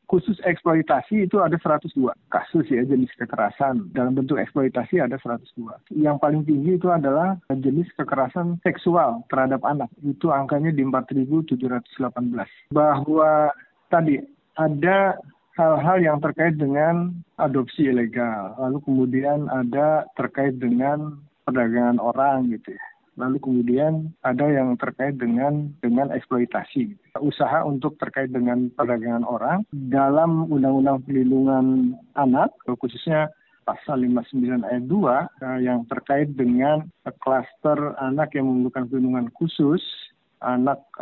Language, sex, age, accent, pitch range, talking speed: Indonesian, male, 50-69, native, 125-155 Hz, 115 wpm